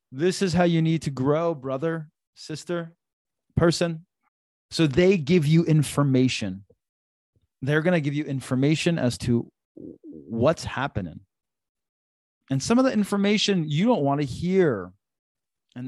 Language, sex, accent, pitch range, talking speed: English, male, American, 115-150 Hz, 135 wpm